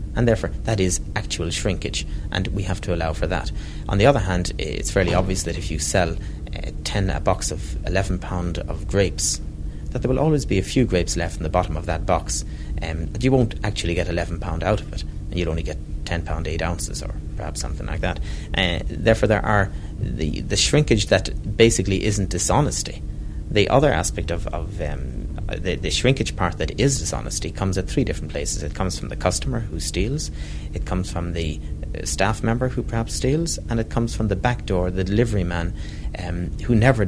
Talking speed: 205 wpm